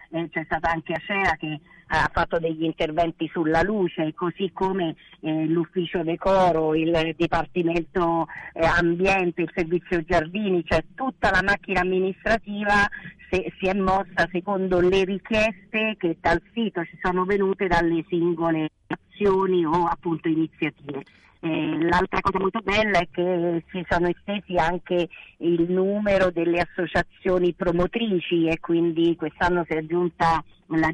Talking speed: 140 wpm